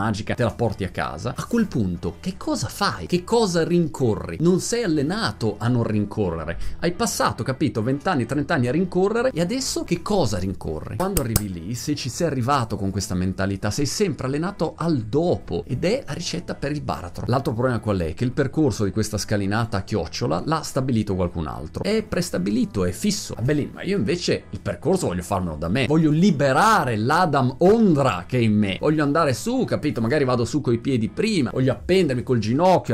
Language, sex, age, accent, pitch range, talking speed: Italian, male, 30-49, native, 105-160 Hz, 200 wpm